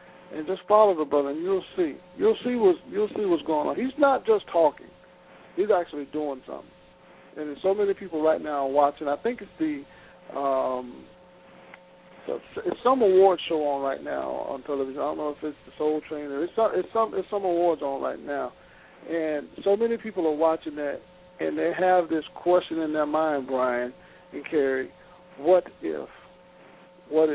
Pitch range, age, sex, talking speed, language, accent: 155-195 Hz, 50-69, male, 190 wpm, English, American